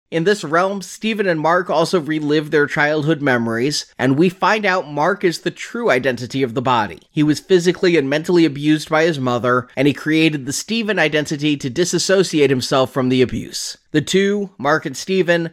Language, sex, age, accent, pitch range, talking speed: English, male, 30-49, American, 140-180 Hz, 190 wpm